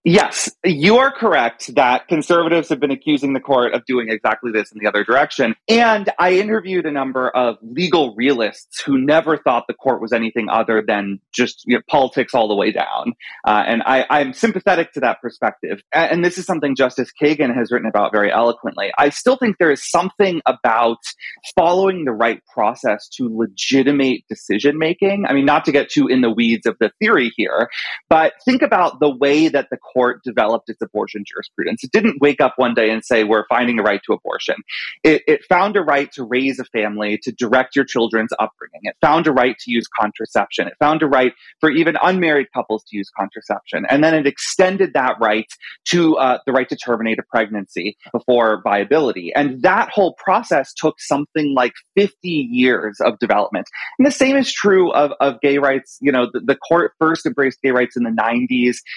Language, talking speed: English, 195 wpm